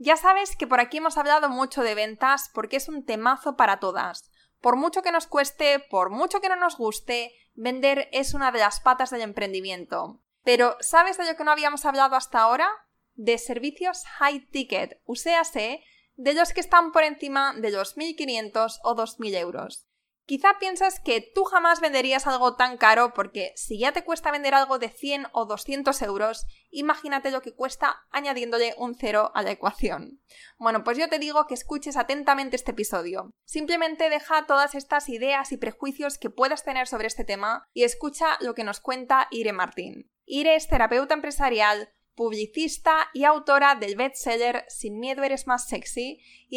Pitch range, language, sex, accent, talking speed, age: 230-295 Hz, Spanish, female, Spanish, 180 wpm, 20-39